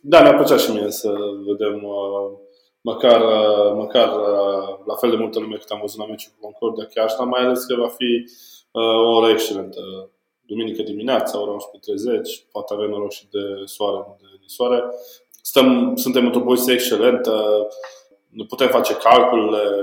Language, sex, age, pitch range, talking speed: Romanian, male, 20-39, 105-125 Hz, 165 wpm